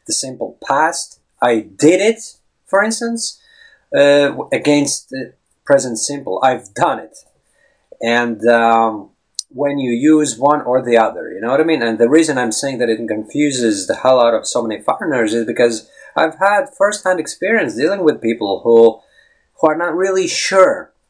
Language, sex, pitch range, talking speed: English, male, 115-185 Hz, 170 wpm